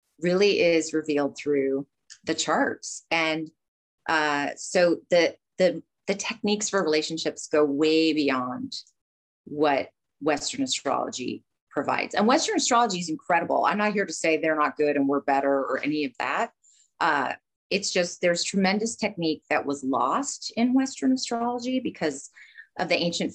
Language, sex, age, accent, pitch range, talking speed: English, female, 30-49, American, 145-195 Hz, 150 wpm